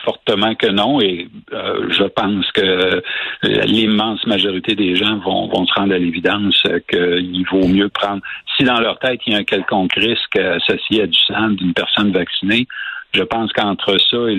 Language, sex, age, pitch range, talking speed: French, male, 60-79, 95-120 Hz, 190 wpm